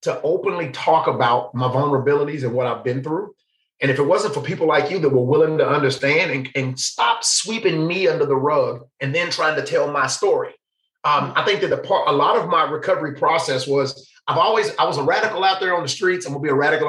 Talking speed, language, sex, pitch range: 240 wpm, English, male, 135-195 Hz